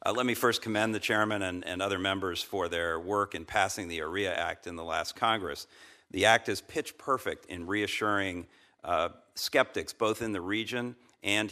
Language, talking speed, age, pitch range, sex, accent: English, 195 wpm, 50-69, 95-120 Hz, male, American